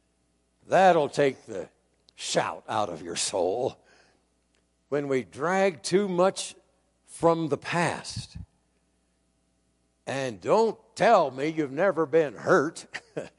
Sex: male